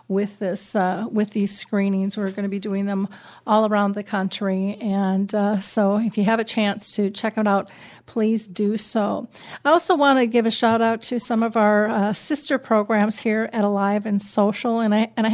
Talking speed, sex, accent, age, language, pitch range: 215 wpm, female, American, 40-59, English, 200-225 Hz